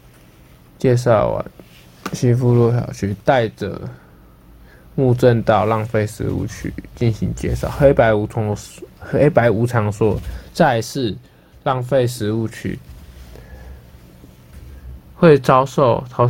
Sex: male